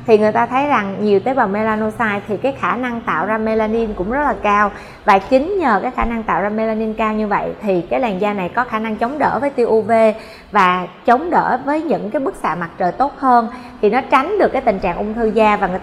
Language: Vietnamese